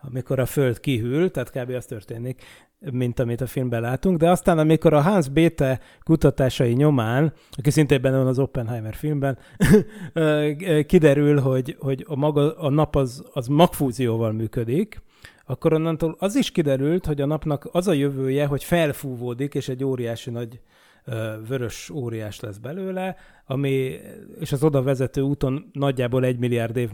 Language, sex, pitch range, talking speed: Hungarian, male, 120-150 Hz, 155 wpm